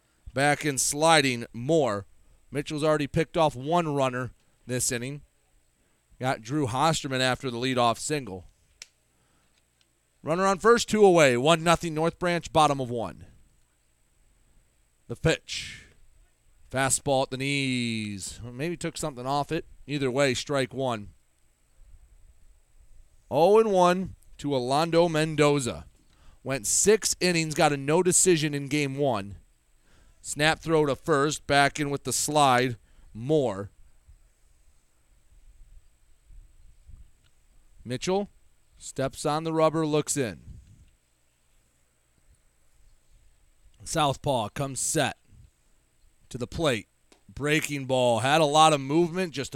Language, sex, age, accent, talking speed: English, male, 30-49, American, 115 wpm